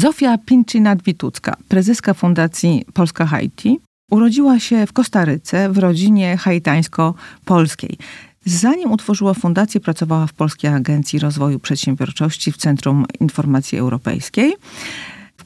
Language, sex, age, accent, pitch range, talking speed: Polish, female, 40-59, native, 155-200 Hz, 110 wpm